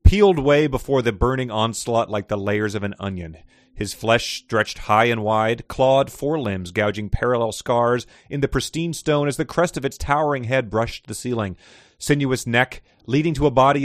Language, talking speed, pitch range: English, 185 wpm, 110-140 Hz